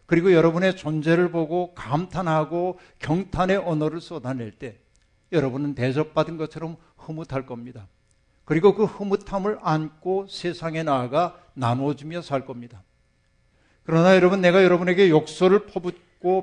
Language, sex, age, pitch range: Korean, male, 50-69, 130-170 Hz